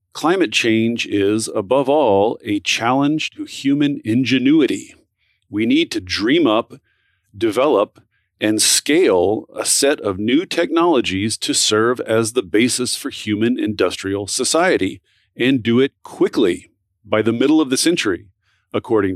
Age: 40-59